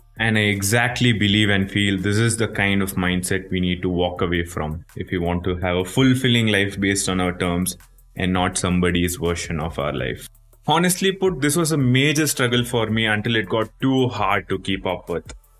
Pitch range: 95-130 Hz